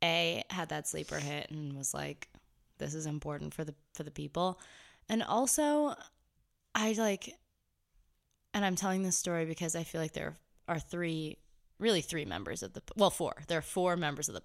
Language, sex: English, female